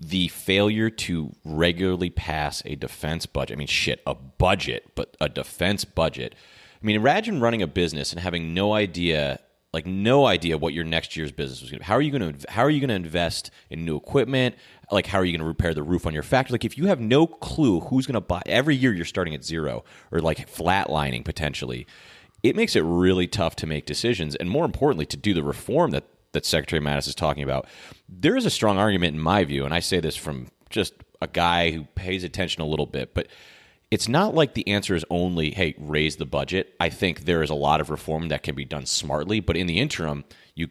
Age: 30-49